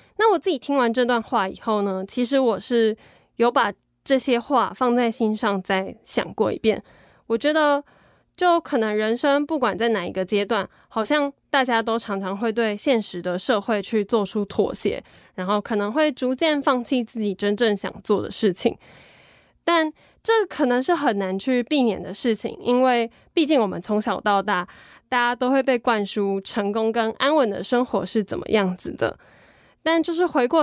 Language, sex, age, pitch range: Chinese, female, 10-29, 205-265 Hz